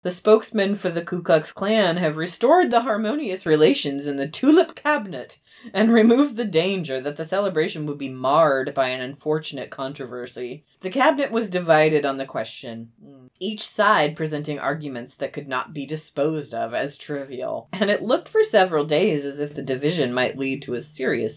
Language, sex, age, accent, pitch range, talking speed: English, female, 30-49, American, 140-215 Hz, 180 wpm